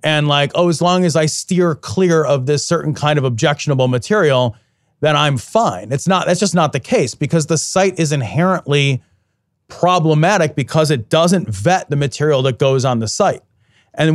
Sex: male